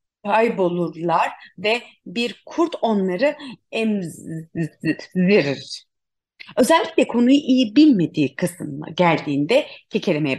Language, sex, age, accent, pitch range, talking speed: Turkish, female, 30-49, native, 165-270 Hz, 75 wpm